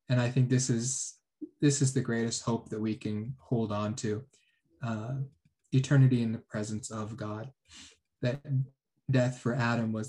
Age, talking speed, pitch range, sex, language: 20-39, 165 wpm, 110-130 Hz, male, English